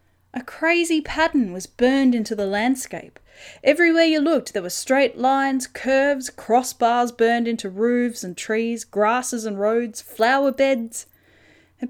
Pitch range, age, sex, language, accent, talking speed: 205-275 Hz, 10-29, female, English, Australian, 140 wpm